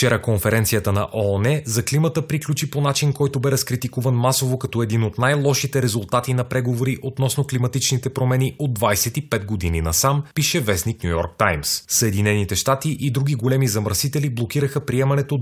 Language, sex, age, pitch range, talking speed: Bulgarian, male, 30-49, 105-135 Hz, 155 wpm